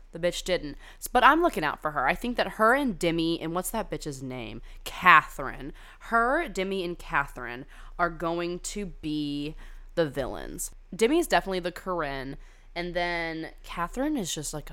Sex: female